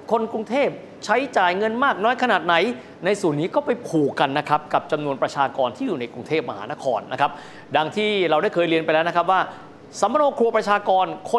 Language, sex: Thai, male